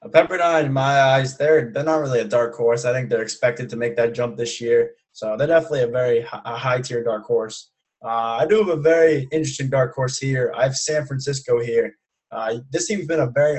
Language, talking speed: English, 220 wpm